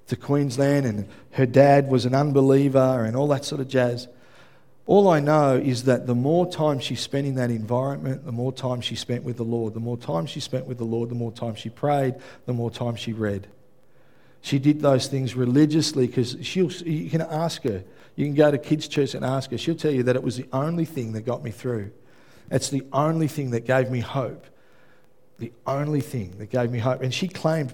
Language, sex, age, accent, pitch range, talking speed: English, male, 50-69, Australian, 125-145 Hz, 225 wpm